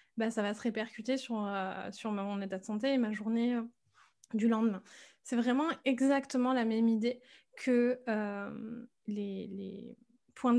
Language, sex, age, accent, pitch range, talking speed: French, female, 20-39, French, 210-255 Hz, 155 wpm